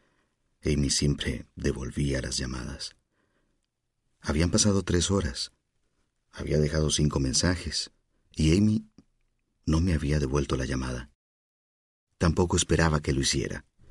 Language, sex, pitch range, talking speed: Spanish, male, 70-85 Hz, 110 wpm